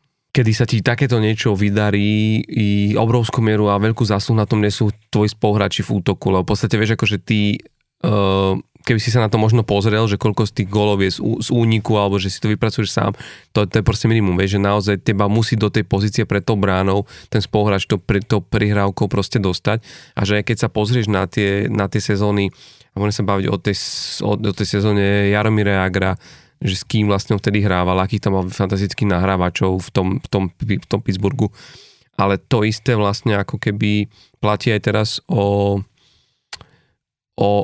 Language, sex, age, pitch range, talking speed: Slovak, male, 30-49, 100-110 Hz, 195 wpm